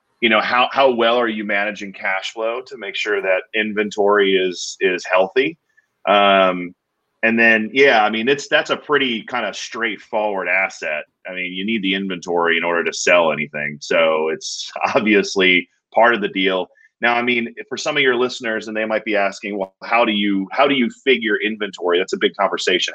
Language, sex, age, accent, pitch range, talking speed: English, male, 30-49, American, 95-125 Hz, 200 wpm